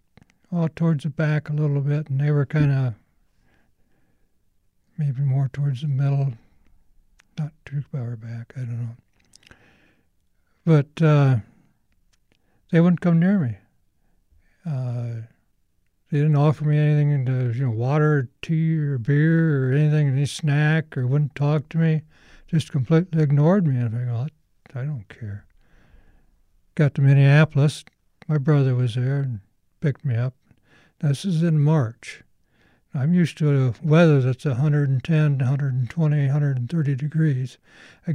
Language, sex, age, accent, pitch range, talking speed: English, male, 60-79, American, 125-155 Hz, 135 wpm